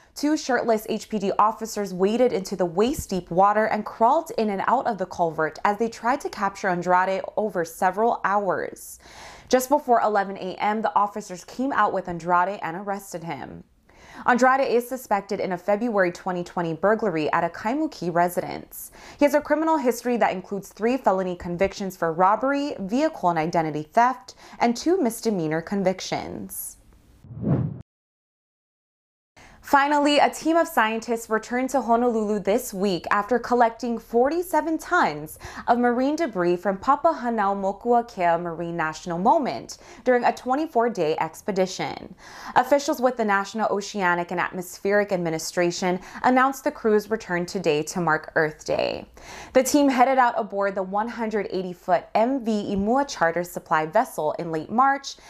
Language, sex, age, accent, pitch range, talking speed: English, female, 20-39, American, 180-245 Hz, 140 wpm